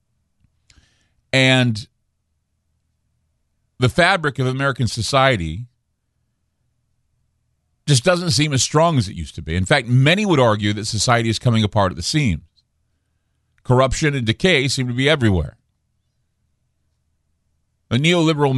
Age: 40-59